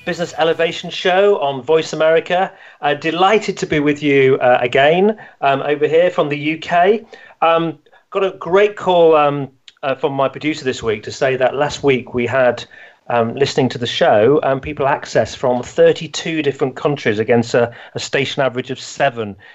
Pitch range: 125-160 Hz